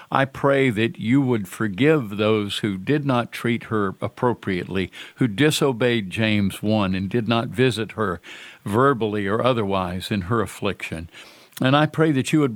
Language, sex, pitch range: English, male, 105-130 Hz